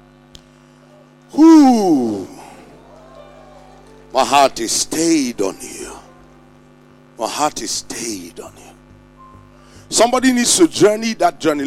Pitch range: 205-320 Hz